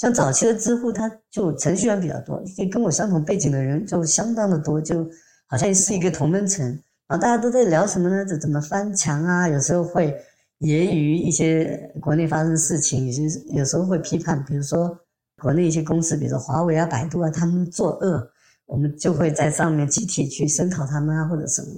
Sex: male